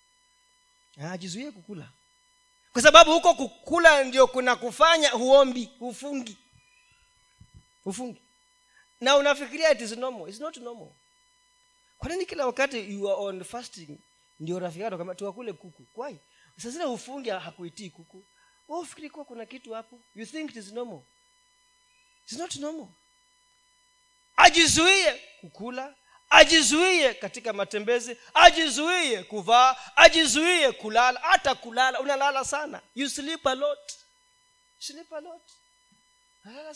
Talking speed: 115 wpm